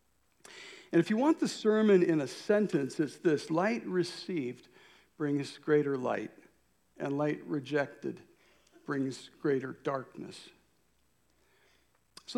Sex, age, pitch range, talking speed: male, 60-79, 135-170 Hz, 110 wpm